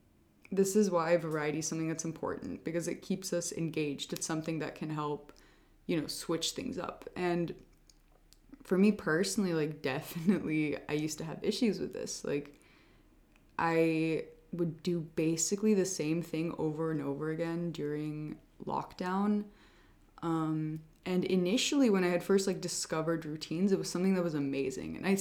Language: English